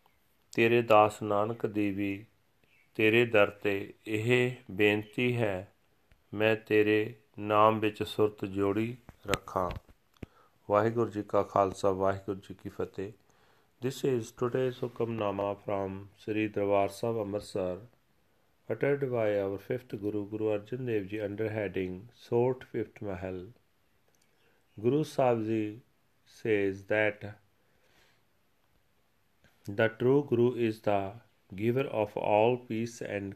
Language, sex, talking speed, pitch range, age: Punjabi, male, 110 wpm, 100-115 Hz, 40-59